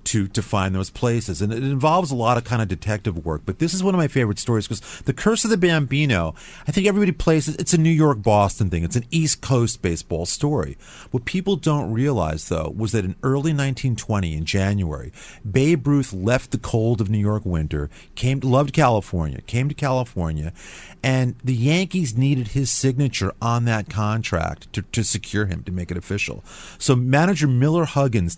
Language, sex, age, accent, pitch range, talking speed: English, male, 40-59, American, 100-150 Hz, 200 wpm